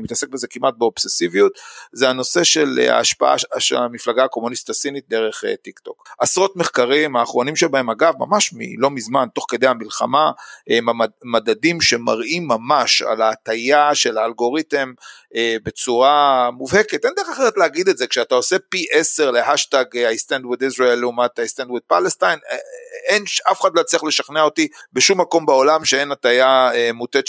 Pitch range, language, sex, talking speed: 120-170 Hz, Hebrew, male, 145 wpm